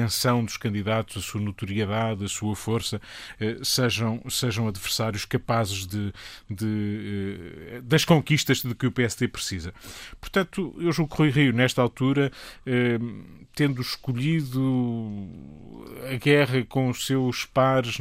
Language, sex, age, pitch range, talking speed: Portuguese, male, 20-39, 110-130 Hz, 125 wpm